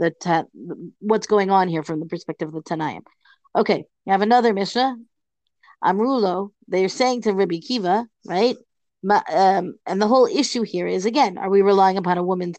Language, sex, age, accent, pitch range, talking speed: English, female, 40-59, American, 190-240 Hz, 185 wpm